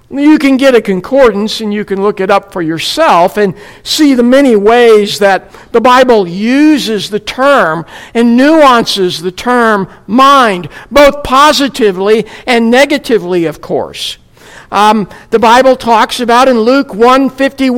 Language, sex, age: English, male, 60-79